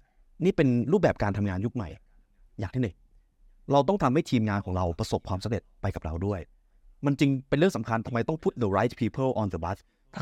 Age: 30-49